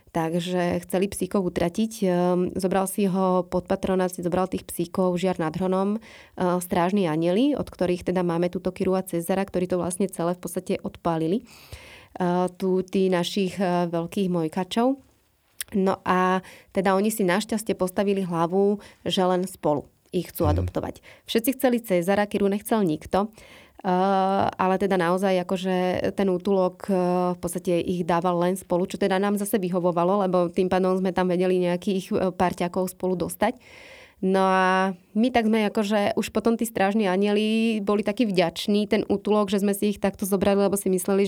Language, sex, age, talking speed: Slovak, female, 20-39, 165 wpm